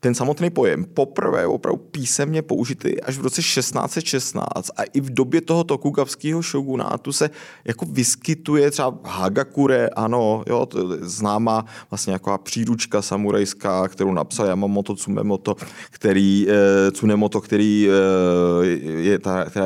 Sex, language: male, Czech